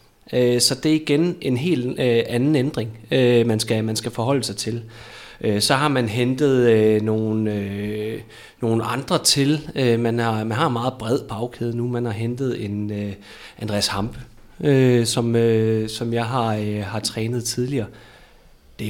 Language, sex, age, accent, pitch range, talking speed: Danish, male, 30-49, native, 115-140 Hz, 125 wpm